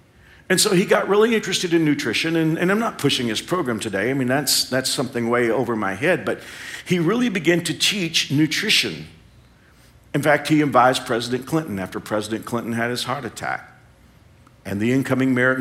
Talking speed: 190 wpm